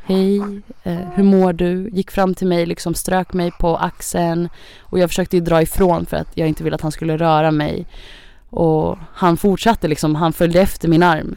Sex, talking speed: female, 205 wpm